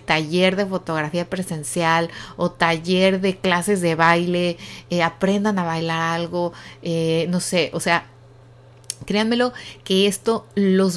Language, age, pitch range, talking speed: Spanish, 30-49, 165-200 Hz, 130 wpm